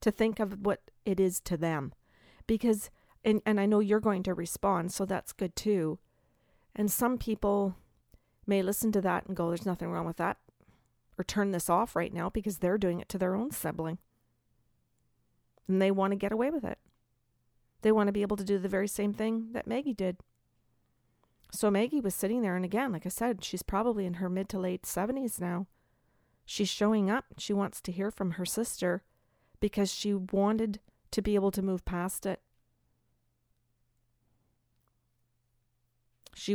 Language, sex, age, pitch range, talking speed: English, female, 40-59, 175-205 Hz, 180 wpm